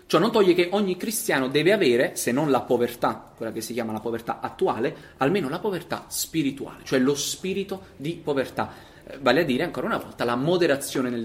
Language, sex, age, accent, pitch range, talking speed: Italian, male, 30-49, native, 115-150 Hz, 205 wpm